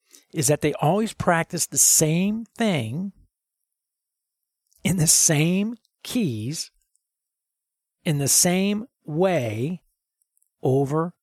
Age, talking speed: 50-69, 90 wpm